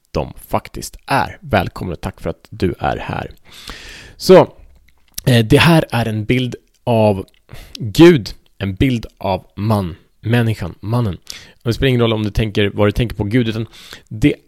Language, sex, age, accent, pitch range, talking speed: Swedish, male, 30-49, Norwegian, 105-135 Hz, 160 wpm